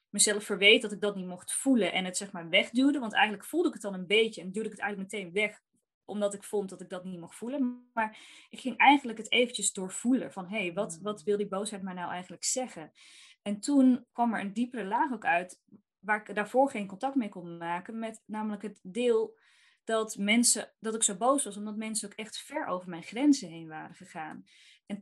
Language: Dutch